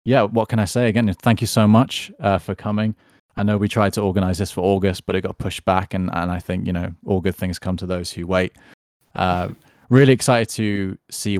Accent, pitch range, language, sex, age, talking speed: British, 95-120 Hz, English, male, 20-39, 240 wpm